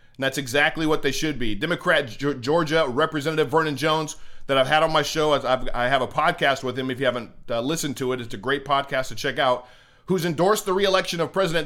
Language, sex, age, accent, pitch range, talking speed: English, male, 40-59, American, 130-165 Hz, 220 wpm